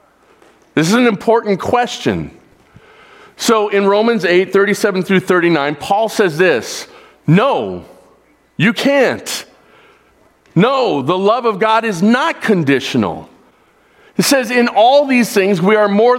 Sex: male